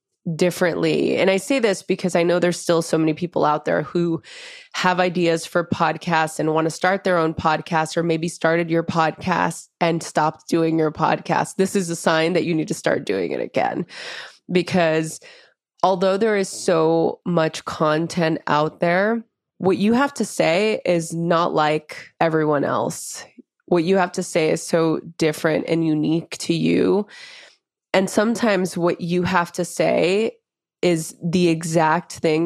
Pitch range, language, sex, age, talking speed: 155-180 Hz, English, female, 20-39, 170 wpm